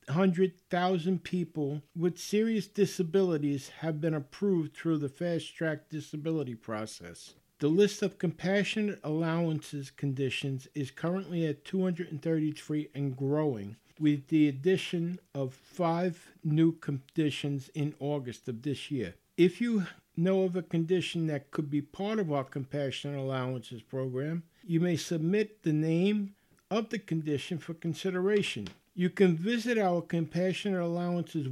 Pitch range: 145-180 Hz